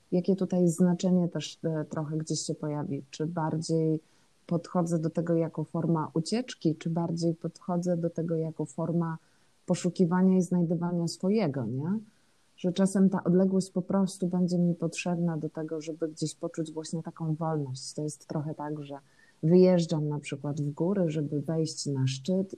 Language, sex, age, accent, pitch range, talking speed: Polish, female, 30-49, native, 135-170 Hz, 160 wpm